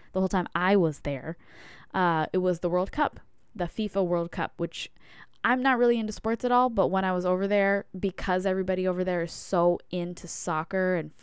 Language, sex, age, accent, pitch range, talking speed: English, female, 10-29, American, 160-185 Hz, 210 wpm